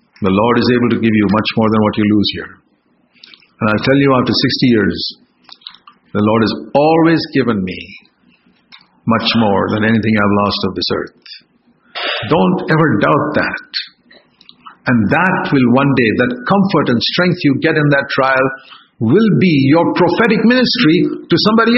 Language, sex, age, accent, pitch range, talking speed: English, male, 50-69, Indian, 135-195 Hz, 170 wpm